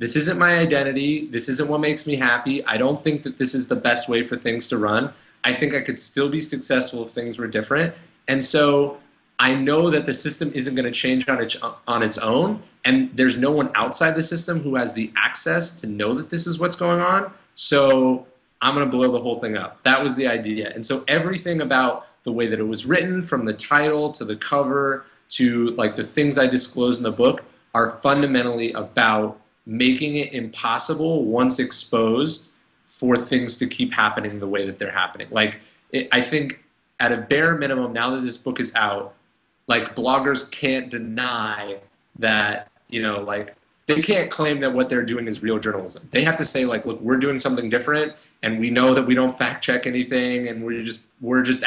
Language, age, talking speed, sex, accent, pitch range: English, 20-39, 205 wpm, male, American, 120-145 Hz